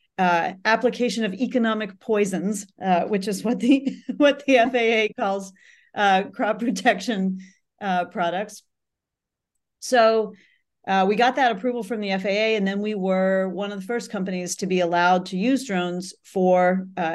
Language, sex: English, female